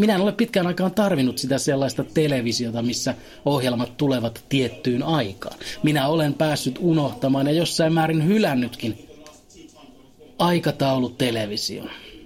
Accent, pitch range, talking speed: native, 125-160 Hz, 115 wpm